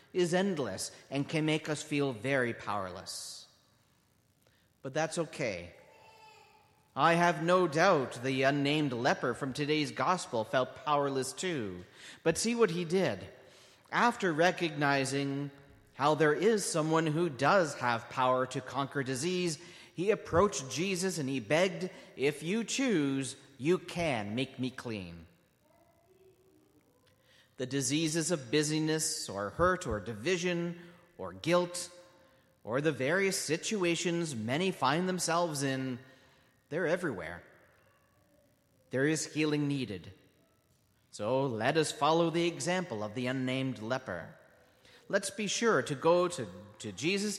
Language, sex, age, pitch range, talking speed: English, male, 40-59, 130-175 Hz, 125 wpm